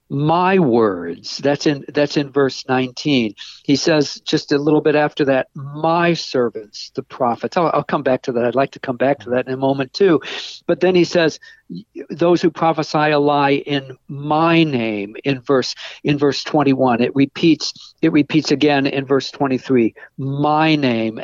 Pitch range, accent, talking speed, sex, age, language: 130-160 Hz, American, 180 wpm, male, 60-79, English